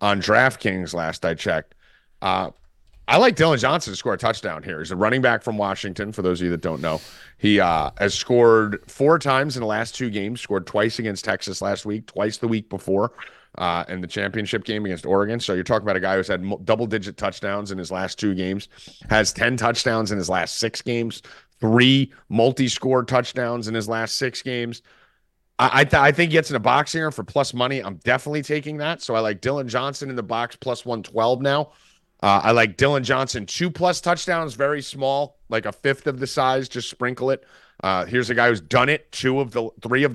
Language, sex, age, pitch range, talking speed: English, male, 30-49, 100-135 Hz, 220 wpm